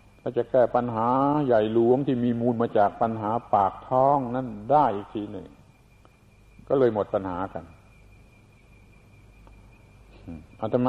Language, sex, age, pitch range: Thai, male, 60-79, 100-115 Hz